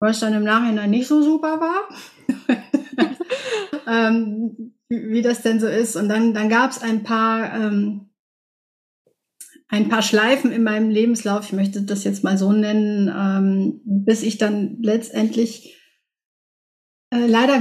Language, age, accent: German, 30-49, German